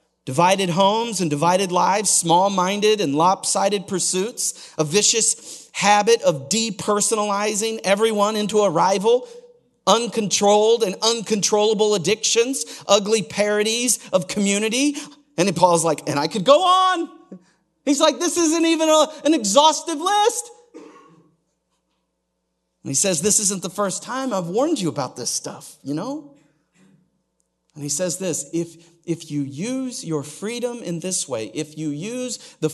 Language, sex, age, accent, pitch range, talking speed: English, male, 40-59, American, 160-230 Hz, 140 wpm